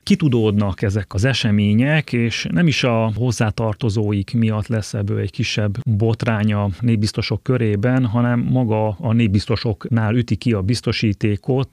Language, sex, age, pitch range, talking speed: Hungarian, male, 30-49, 105-120 Hz, 130 wpm